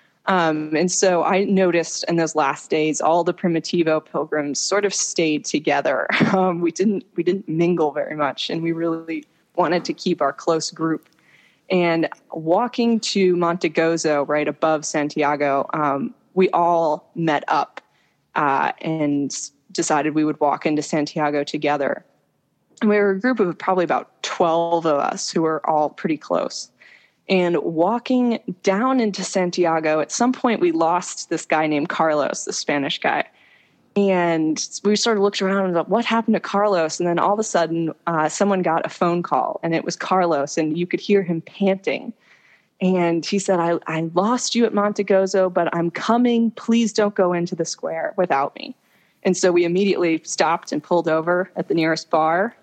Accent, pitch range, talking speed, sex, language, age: American, 160-195 Hz, 175 wpm, female, English, 20-39